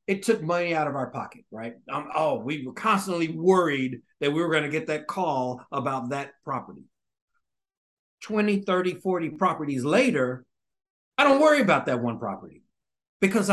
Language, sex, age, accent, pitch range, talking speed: English, male, 50-69, American, 145-200 Hz, 160 wpm